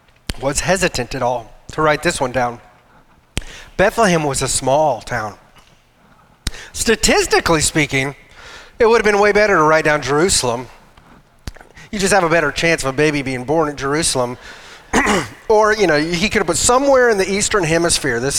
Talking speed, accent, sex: 170 wpm, American, male